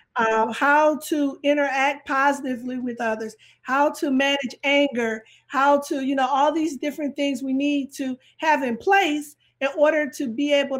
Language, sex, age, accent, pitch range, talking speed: English, female, 40-59, American, 250-295 Hz, 165 wpm